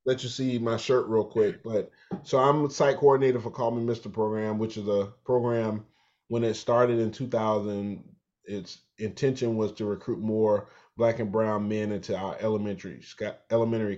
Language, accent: English, American